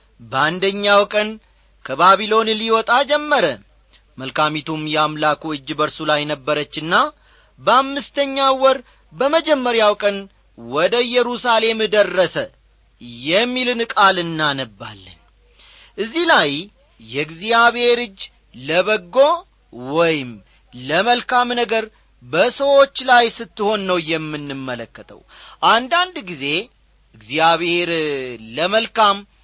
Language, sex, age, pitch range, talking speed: Amharic, male, 40-59, 150-235 Hz, 75 wpm